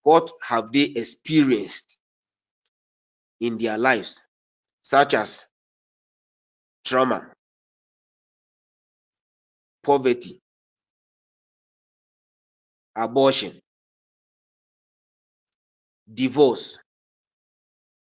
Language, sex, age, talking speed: English, male, 50-69, 45 wpm